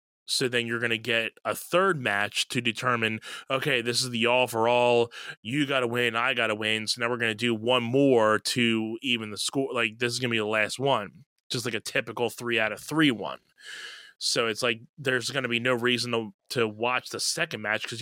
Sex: male